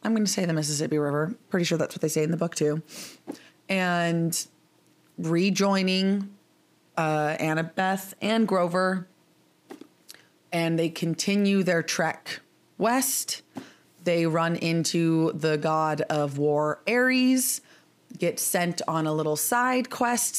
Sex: female